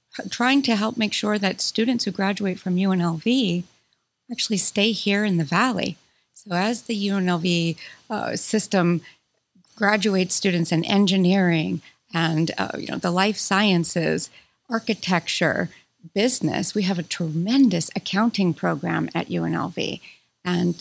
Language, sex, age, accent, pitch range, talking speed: English, female, 40-59, American, 175-210 Hz, 130 wpm